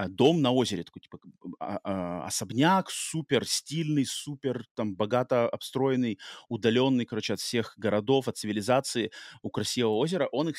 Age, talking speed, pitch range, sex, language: 30-49, 135 wpm, 115-140 Hz, male, Russian